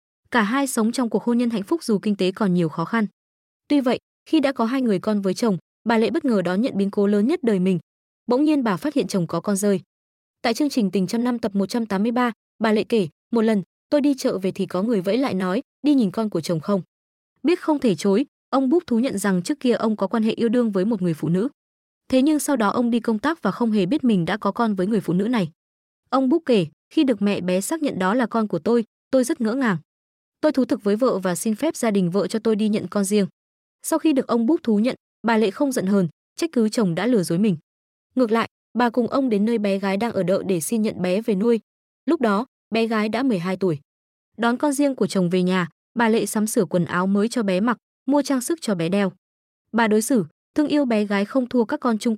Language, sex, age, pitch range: Vietnamese, female, 20-39, 195-245 Hz